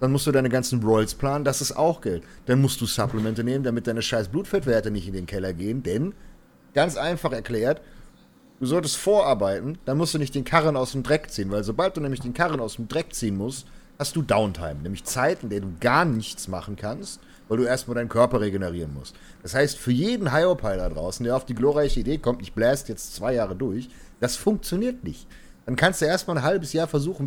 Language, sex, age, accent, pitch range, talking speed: German, male, 40-59, German, 110-145 Hz, 225 wpm